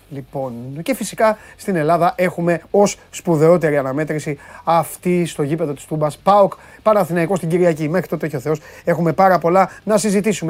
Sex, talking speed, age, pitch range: male, 160 wpm, 30-49, 145-205 Hz